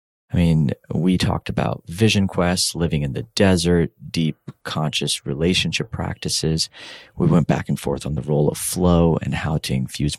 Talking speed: 170 wpm